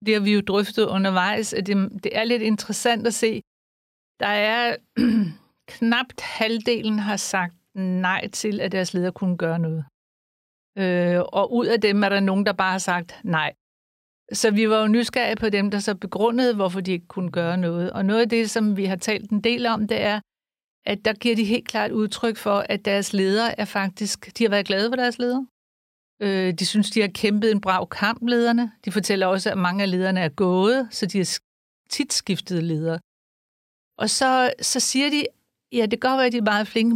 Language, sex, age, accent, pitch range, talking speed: Danish, female, 60-79, native, 190-230 Hz, 205 wpm